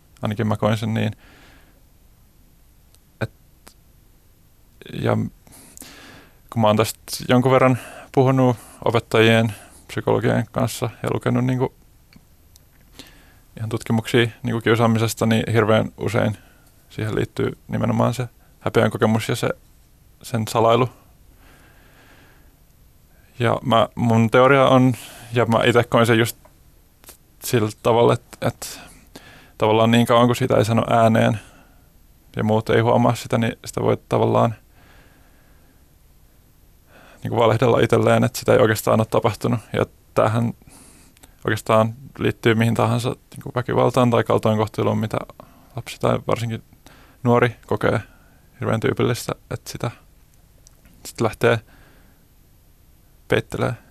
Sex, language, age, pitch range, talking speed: male, Finnish, 20-39, 110-120 Hz, 110 wpm